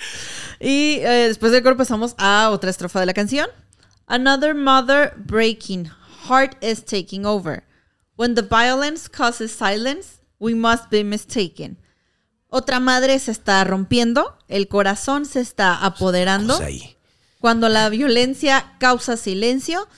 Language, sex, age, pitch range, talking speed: Spanish, female, 30-49, 195-245 Hz, 130 wpm